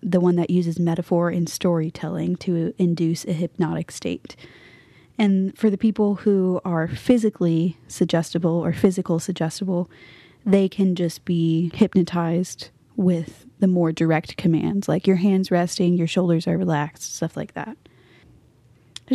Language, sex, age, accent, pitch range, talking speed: English, female, 20-39, American, 170-200 Hz, 140 wpm